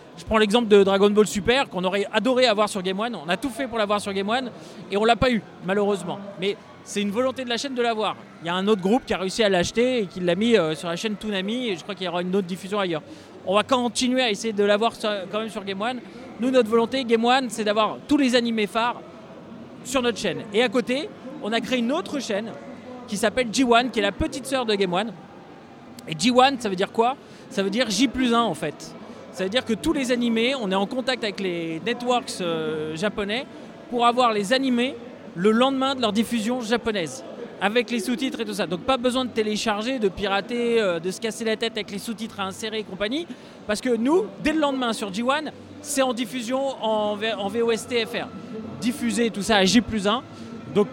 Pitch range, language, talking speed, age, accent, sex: 200-245 Hz, French, 240 wpm, 20-39, French, male